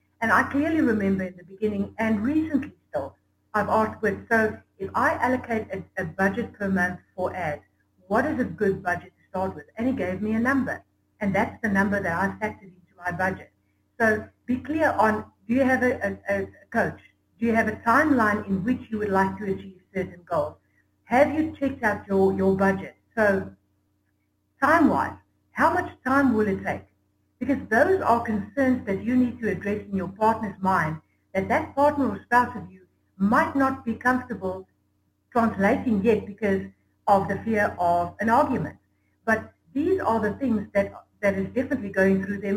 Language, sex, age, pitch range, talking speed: English, female, 60-79, 190-245 Hz, 190 wpm